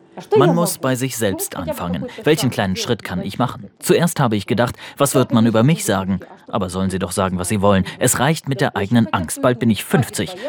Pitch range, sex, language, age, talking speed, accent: 105-150 Hz, male, German, 30-49, 230 wpm, German